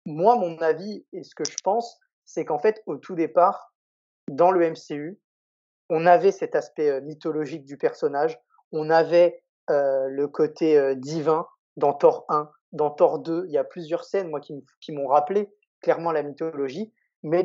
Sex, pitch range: male, 155-200 Hz